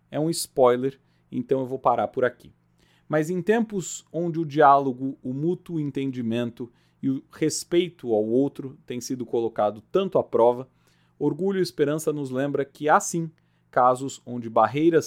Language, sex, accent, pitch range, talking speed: Portuguese, male, Brazilian, 115-160 Hz, 160 wpm